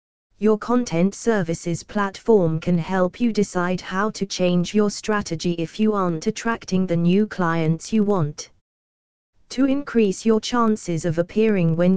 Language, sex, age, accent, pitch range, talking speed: English, female, 20-39, British, 175-210 Hz, 145 wpm